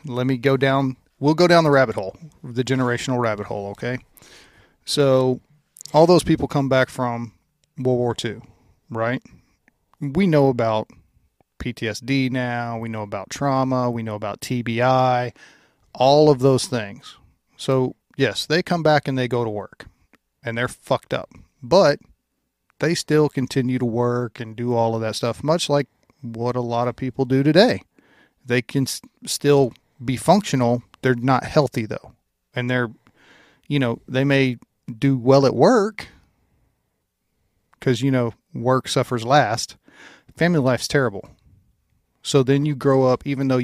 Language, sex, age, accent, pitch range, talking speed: English, male, 40-59, American, 115-140 Hz, 155 wpm